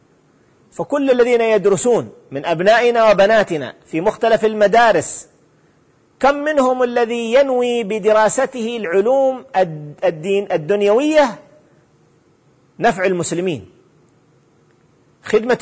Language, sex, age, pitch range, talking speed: Arabic, male, 40-59, 190-240 Hz, 75 wpm